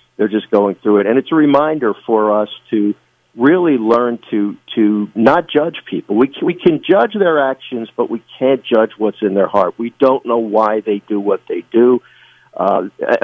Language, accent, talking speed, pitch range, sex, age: English, American, 200 wpm, 110-135 Hz, male, 50-69